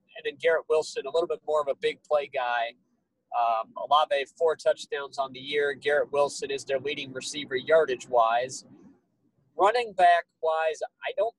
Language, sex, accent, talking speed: English, male, American, 165 wpm